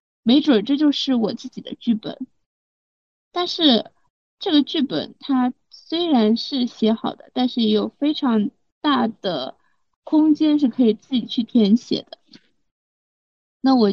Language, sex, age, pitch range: Chinese, female, 20-39, 215-265 Hz